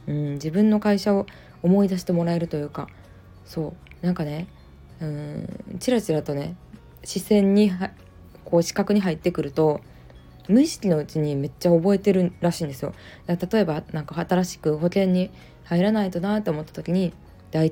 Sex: female